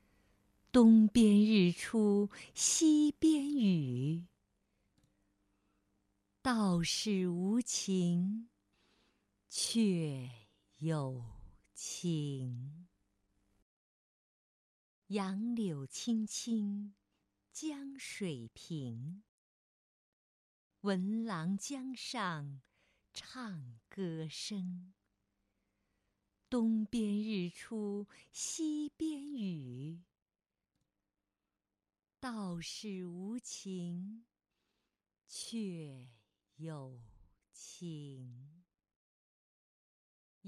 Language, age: Chinese, 50-69